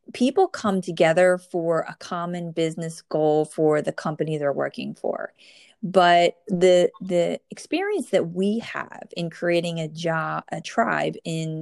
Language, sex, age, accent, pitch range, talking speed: English, female, 30-49, American, 170-220 Hz, 145 wpm